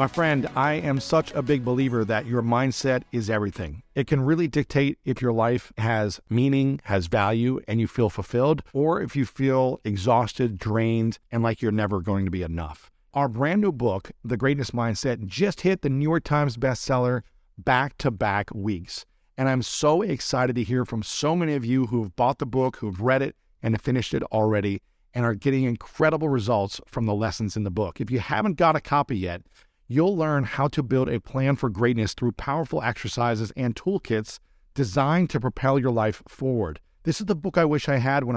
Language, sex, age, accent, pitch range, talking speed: English, male, 50-69, American, 110-140 Hz, 200 wpm